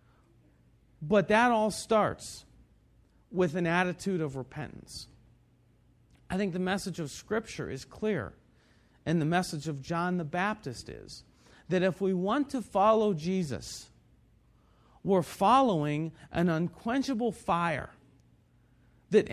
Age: 40-59